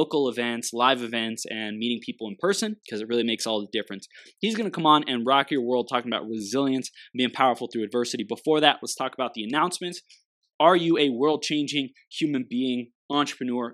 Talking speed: 210 wpm